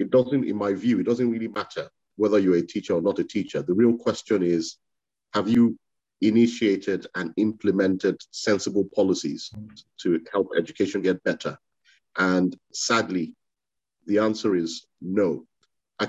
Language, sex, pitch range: English, male, 90-110 Hz